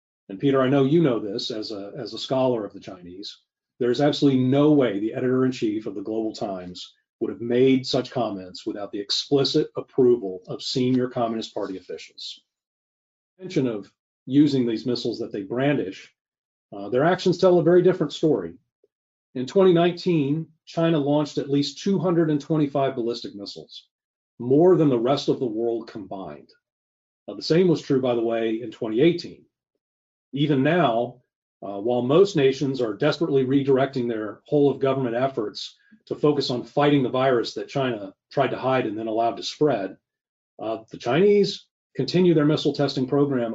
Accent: American